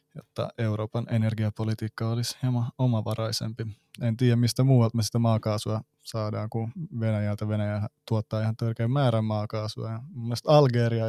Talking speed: 135 wpm